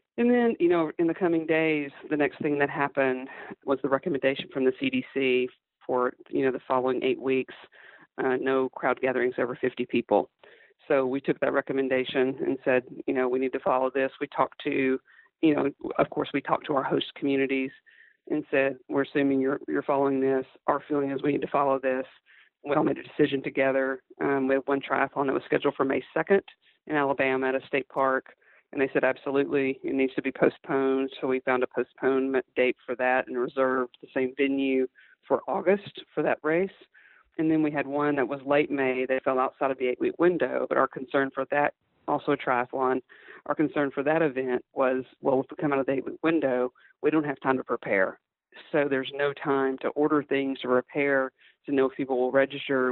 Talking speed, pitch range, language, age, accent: 210 wpm, 130-145 Hz, English, 40-59, American